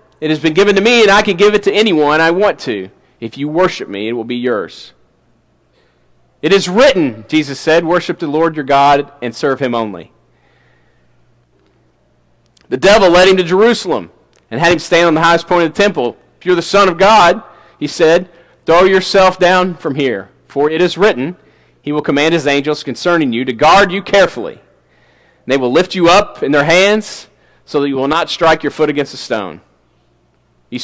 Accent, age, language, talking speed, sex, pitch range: American, 40-59, English, 200 wpm, male, 150-215 Hz